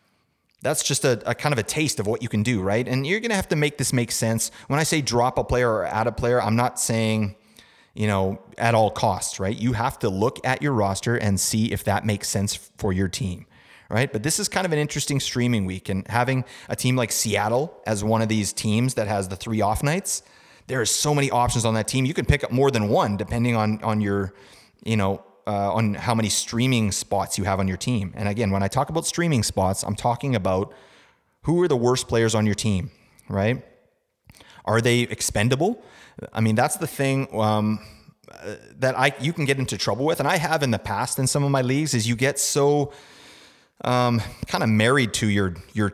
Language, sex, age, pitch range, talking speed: English, male, 30-49, 105-130 Hz, 230 wpm